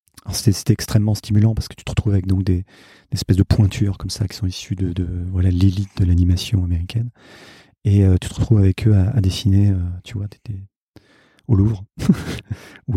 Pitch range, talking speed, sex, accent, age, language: 95-115 Hz, 210 wpm, male, French, 40-59, French